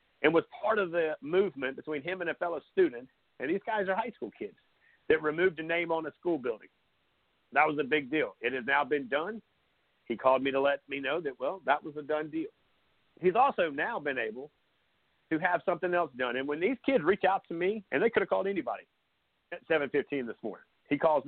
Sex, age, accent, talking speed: male, 50-69, American, 230 wpm